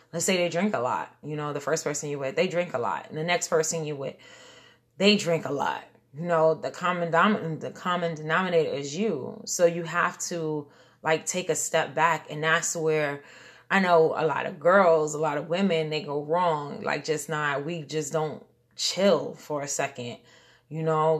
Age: 20-39